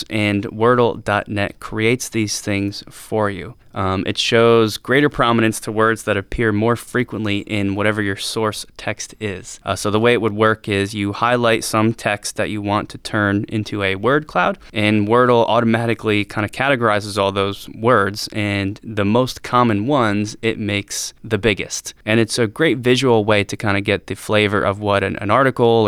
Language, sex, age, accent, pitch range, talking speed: English, male, 20-39, American, 105-115 Hz, 185 wpm